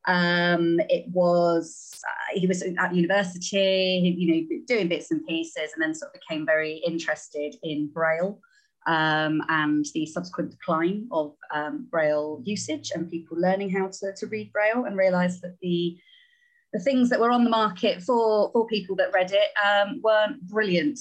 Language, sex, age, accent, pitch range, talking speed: English, female, 30-49, British, 170-215 Hz, 170 wpm